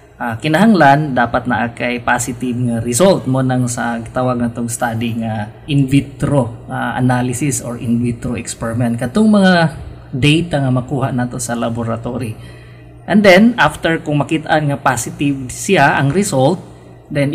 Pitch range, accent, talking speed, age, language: 120-155 Hz, native, 145 wpm, 20-39, Filipino